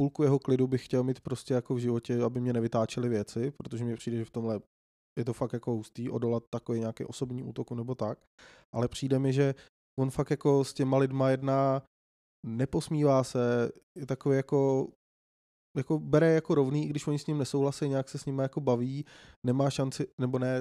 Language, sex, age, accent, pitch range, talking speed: Czech, male, 20-39, native, 125-145 Hz, 195 wpm